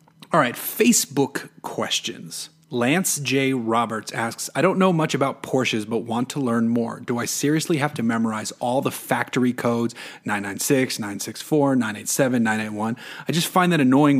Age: 30-49